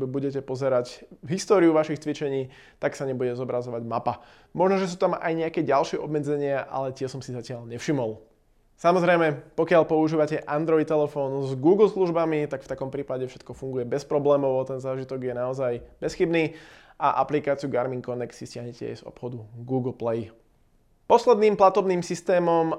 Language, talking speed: Slovak, 155 wpm